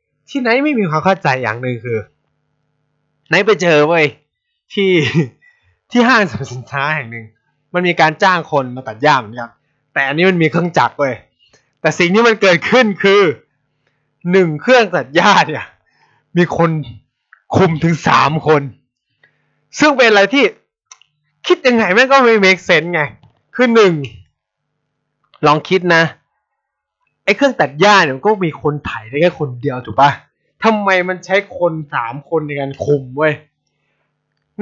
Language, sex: Thai, male